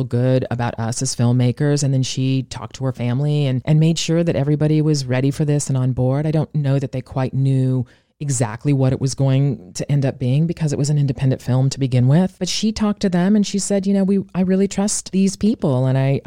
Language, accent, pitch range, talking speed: English, American, 130-185 Hz, 250 wpm